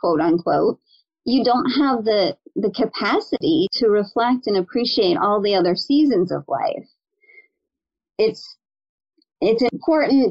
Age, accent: 30-49, American